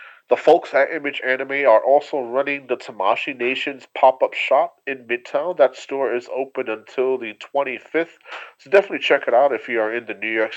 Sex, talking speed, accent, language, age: male, 200 wpm, American, English, 30-49